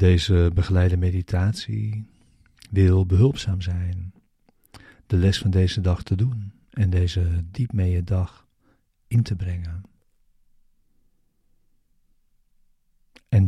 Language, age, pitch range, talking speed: Dutch, 50-69, 90-105 Hz, 100 wpm